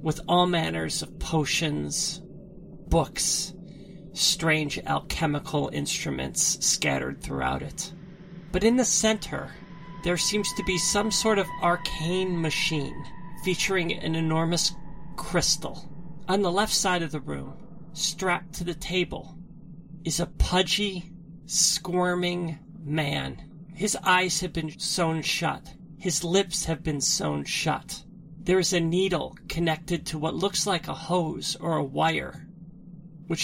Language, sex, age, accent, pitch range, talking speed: English, male, 40-59, American, 160-180 Hz, 130 wpm